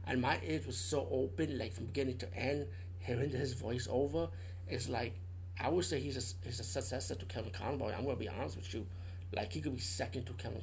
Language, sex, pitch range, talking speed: English, male, 90-125 Hz, 230 wpm